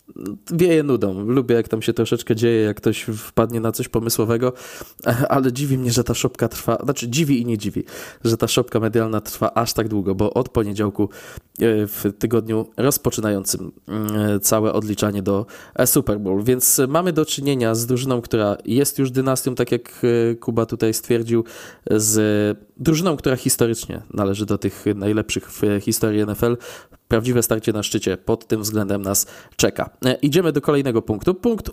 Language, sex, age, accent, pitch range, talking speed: Polish, male, 20-39, native, 105-130 Hz, 160 wpm